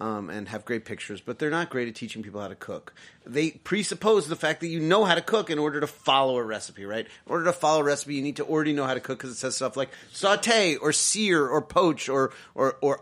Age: 30-49